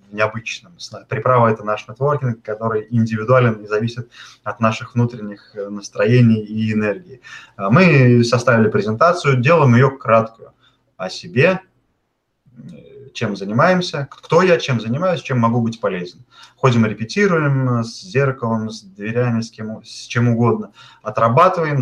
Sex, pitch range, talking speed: male, 110-135 Hz, 130 wpm